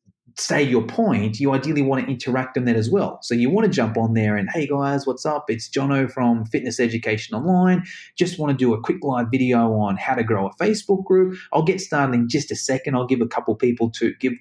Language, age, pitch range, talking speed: English, 30-49, 120-190 Hz, 250 wpm